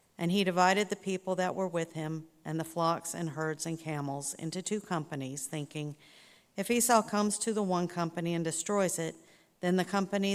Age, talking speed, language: 50-69, 190 wpm, English